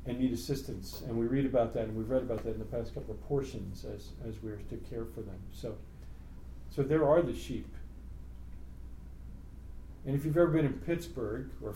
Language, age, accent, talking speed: English, 40-59, American, 205 wpm